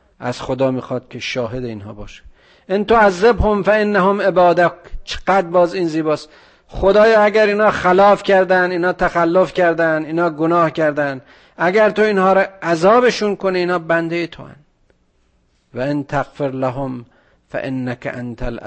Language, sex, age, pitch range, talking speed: Persian, male, 50-69, 130-170 Hz, 150 wpm